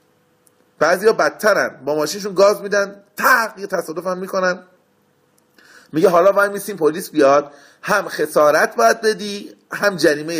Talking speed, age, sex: 125 wpm, 30-49, male